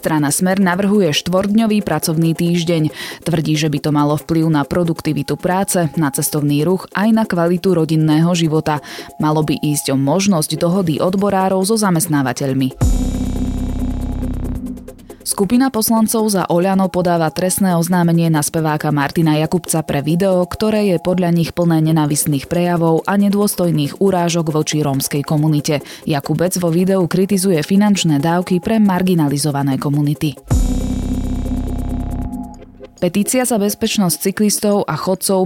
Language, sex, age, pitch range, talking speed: Slovak, female, 20-39, 150-190 Hz, 125 wpm